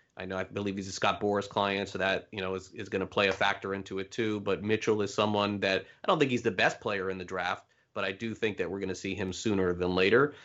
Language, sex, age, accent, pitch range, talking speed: English, male, 30-49, American, 100-125 Hz, 295 wpm